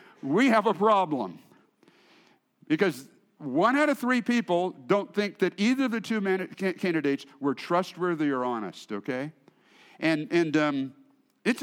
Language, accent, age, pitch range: English, American, 50-69, 155-225 Hz